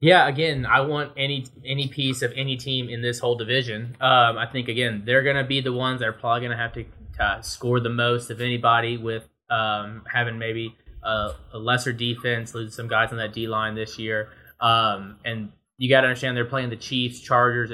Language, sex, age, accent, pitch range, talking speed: English, male, 20-39, American, 110-120 Hz, 215 wpm